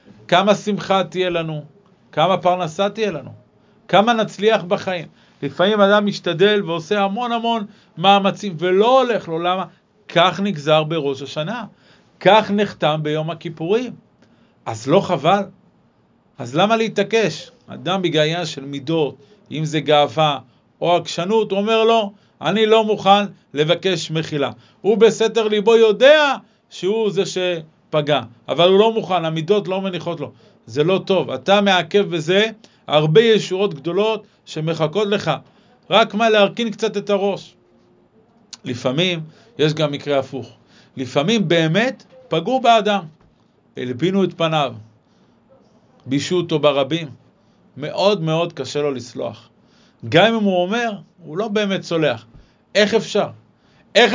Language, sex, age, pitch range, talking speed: Hebrew, male, 50-69, 155-210 Hz, 130 wpm